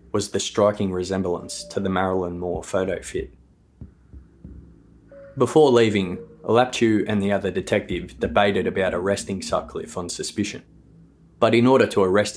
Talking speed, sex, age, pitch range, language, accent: 135 wpm, male, 20-39, 90-110 Hz, English, Australian